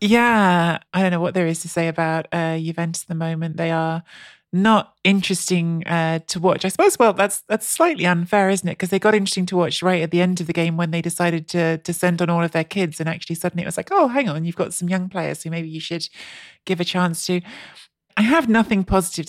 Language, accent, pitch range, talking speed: English, British, 160-180 Hz, 250 wpm